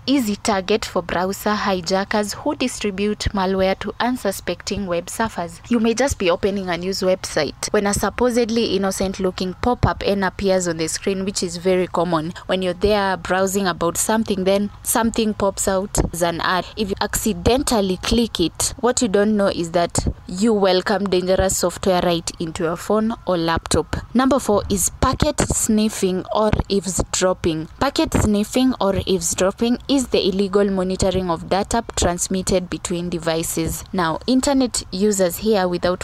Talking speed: 150 wpm